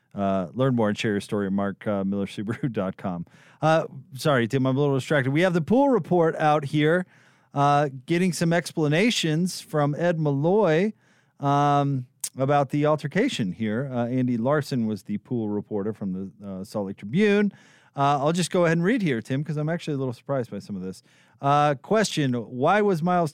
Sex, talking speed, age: male, 190 wpm, 40-59